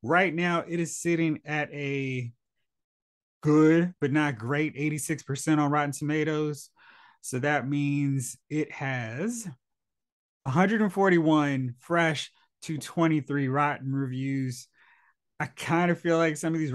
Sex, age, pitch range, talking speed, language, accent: male, 30-49, 135-170 Hz, 120 wpm, English, American